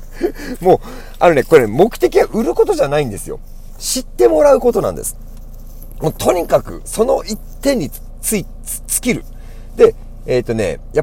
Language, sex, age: Japanese, male, 40-59